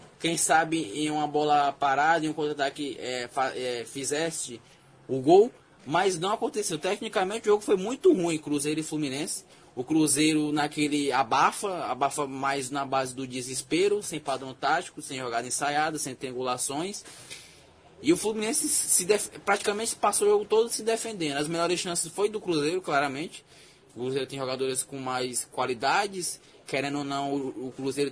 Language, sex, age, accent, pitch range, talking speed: Portuguese, male, 10-29, Brazilian, 130-170 Hz, 165 wpm